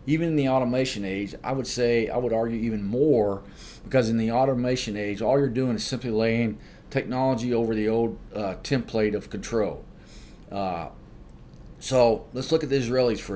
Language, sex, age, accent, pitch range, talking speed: English, male, 40-59, American, 100-125 Hz, 180 wpm